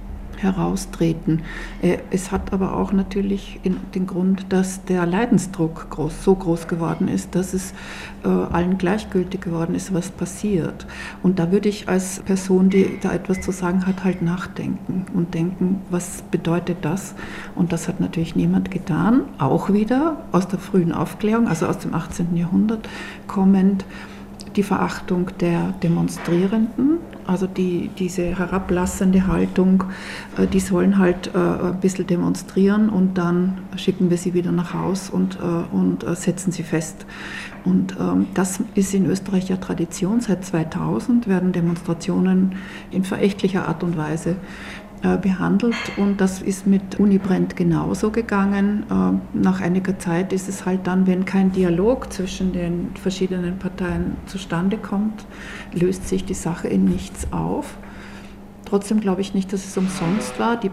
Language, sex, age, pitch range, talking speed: German, female, 50-69, 175-195 Hz, 145 wpm